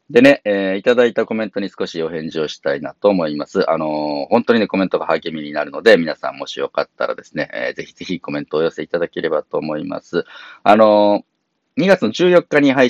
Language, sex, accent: Japanese, male, native